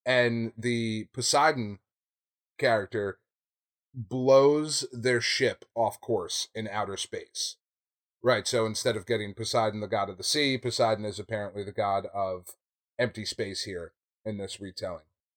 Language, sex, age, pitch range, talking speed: English, male, 30-49, 100-130 Hz, 135 wpm